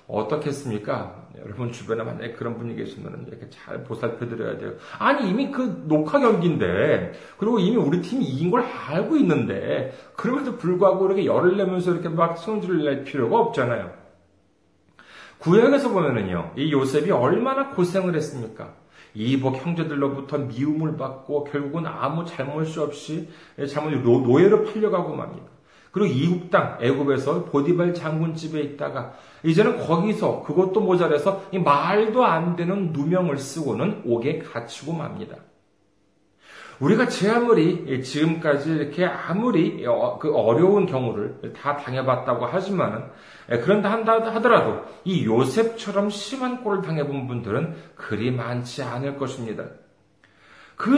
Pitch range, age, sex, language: 140-205 Hz, 40-59, male, Korean